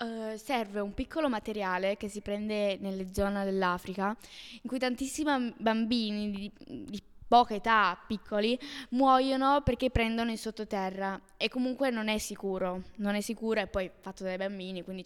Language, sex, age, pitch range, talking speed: Italian, female, 10-29, 200-240 Hz, 150 wpm